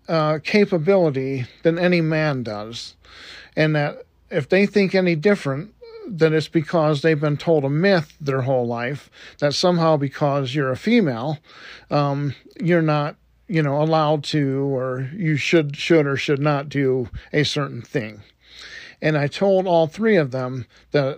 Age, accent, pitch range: 50-69, American, 135-160 Hz